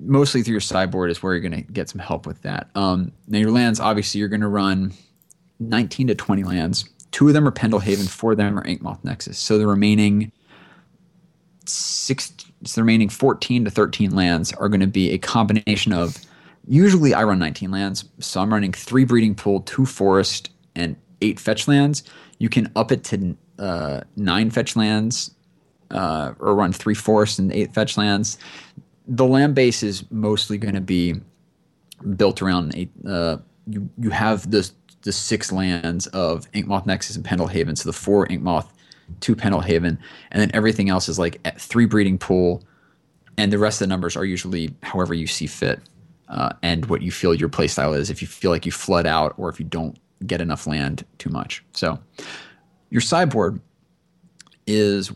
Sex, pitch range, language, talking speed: male, 95-115 Hz, English, 190 wpm